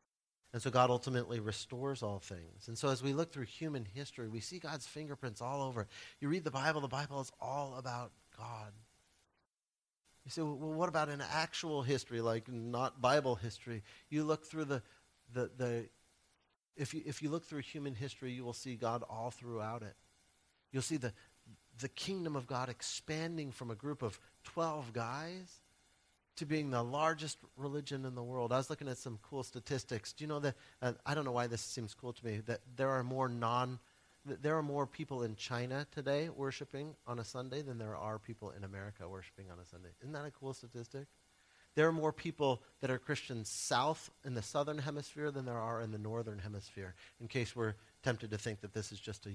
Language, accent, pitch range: English, American, 105-140 Hz